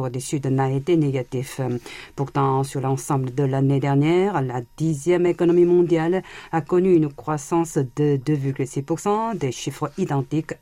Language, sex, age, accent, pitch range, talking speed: French, female, 50-69, French, 135-170 Hz, 135 wpm